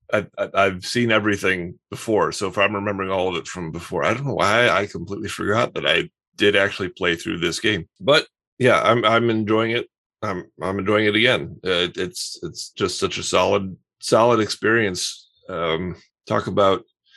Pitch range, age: 95-115 Hz, 30-49